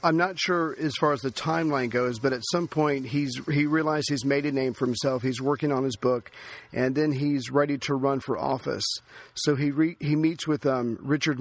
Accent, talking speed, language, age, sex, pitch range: American, 225 wpm, English, 40-59, male, 130-150 Hz